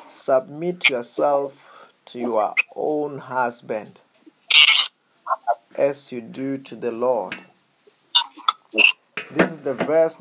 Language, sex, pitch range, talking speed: English, male, 130-180 Hz, 95 wpm